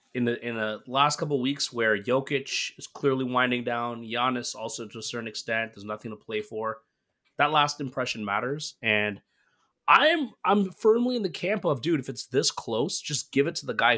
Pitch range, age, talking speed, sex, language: 110-150 Hz, 20-39, 205 wpm, male, English